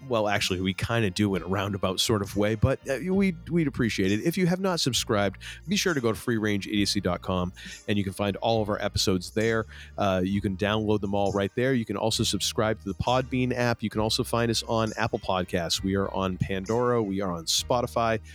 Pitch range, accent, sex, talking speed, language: 100-135 Hz, American, male, 230 wpm, English